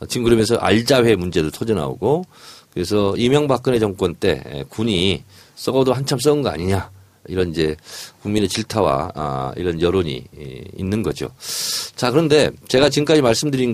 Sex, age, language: male, 40-59, Korean